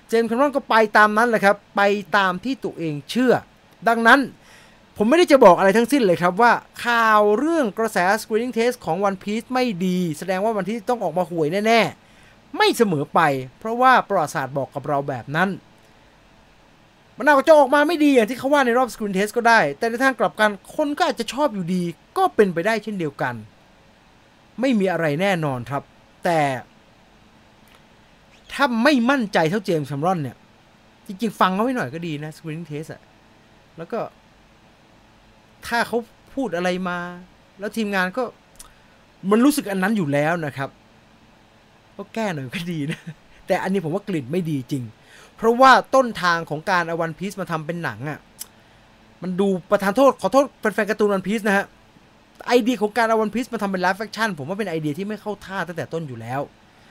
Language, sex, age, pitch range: English, male, 20-39, 145-225 Hz